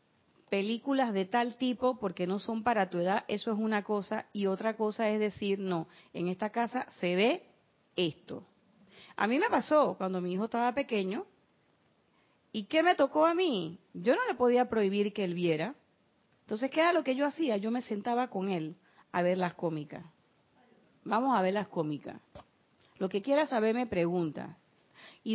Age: 40-59